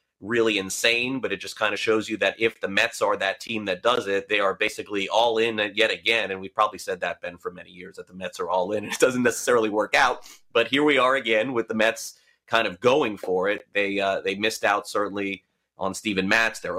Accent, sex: American, male